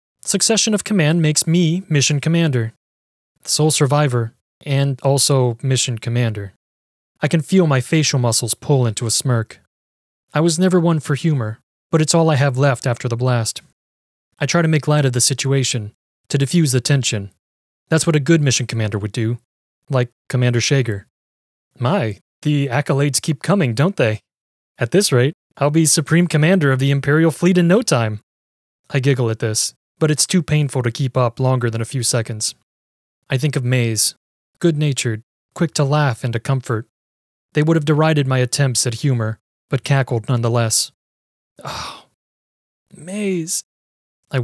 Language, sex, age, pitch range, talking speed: English, male, 20-39, 115-150 Hz, 165 wpm